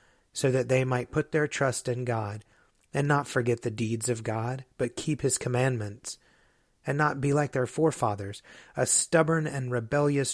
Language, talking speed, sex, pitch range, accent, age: English, 175 wpm, male, 115-140 Hz, American, 30-49